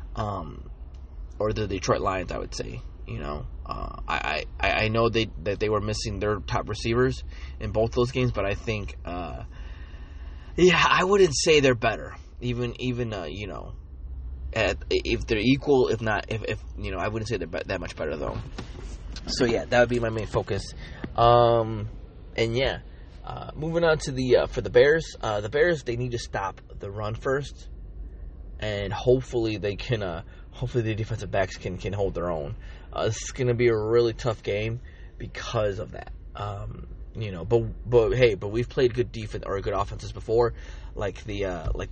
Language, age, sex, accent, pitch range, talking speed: English, 20-39, male, American, 90-120 Hz, 195 wpm